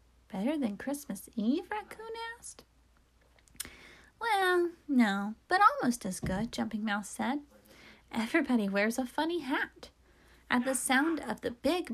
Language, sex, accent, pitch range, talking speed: English, female, American, 215-305 Hz, 130 wpm